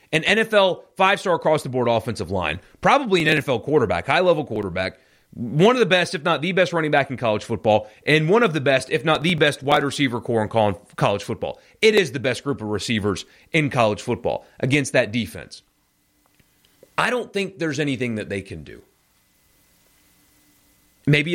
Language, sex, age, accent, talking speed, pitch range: English, male, 30-49, American, 175 wpm, 115-160 Hz